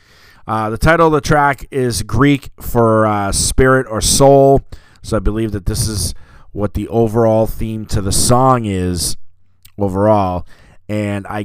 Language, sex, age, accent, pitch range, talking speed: English, male, 30-49, American, 100-120 Hz, 155 wpm